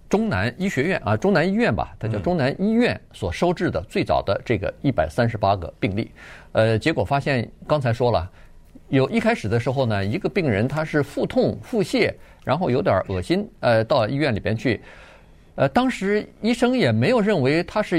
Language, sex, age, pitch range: Chinese, male, 50-69, 100-160 Hz